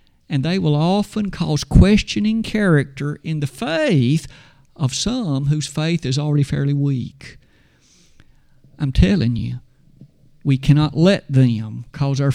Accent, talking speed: American, 130 wpm